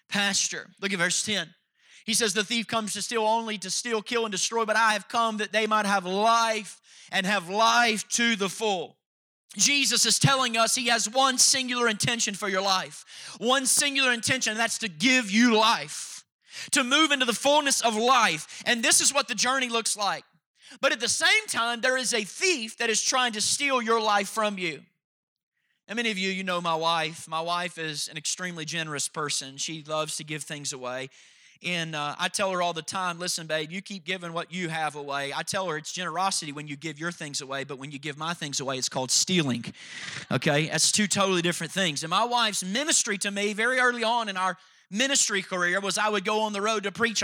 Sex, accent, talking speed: male, American, 220 wpm